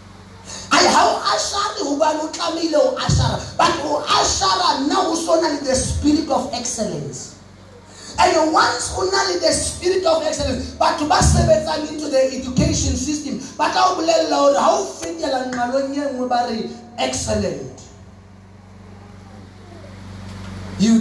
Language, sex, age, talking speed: English, male, 30-49, 115 wpm